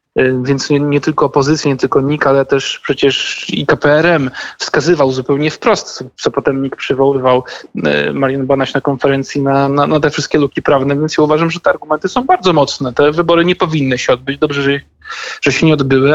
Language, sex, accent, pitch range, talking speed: Polish, male, native, 135-165 Hz, 195 wpm